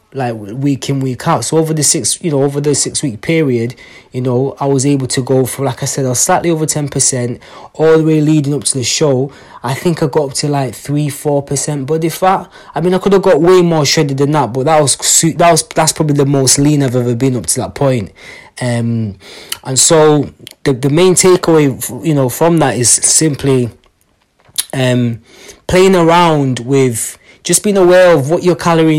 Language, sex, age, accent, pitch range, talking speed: English, male, 20-39, British, 125-155 Hz, 215 wpm